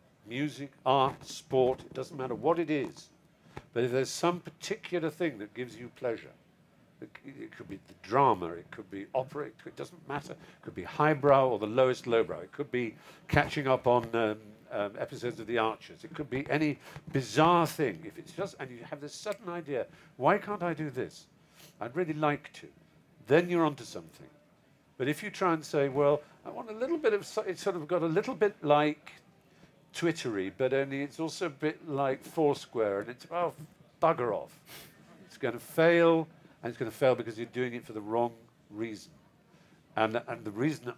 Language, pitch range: English, 120-165 Hz